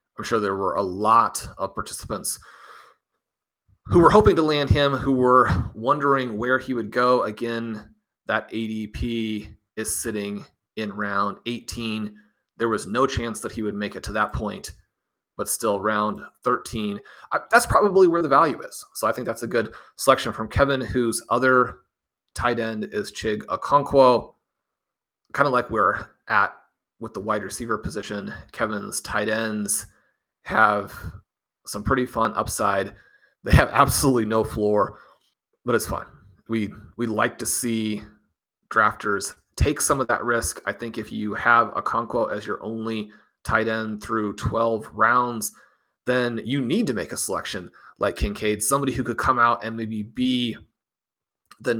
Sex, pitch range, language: male, 105-120 Hz, English